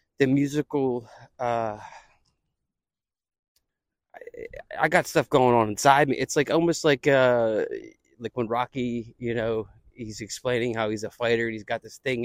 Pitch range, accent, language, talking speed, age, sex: 120-150 Hz, American, English, 155 wpm, 20-39, male